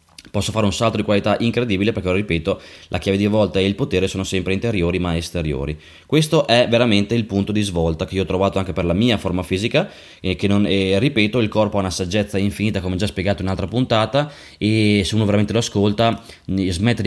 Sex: male